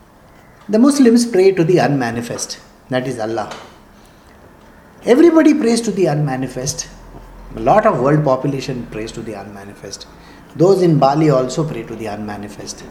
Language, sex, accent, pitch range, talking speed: English, male, Indian, 115-175 Hz, 145 wpm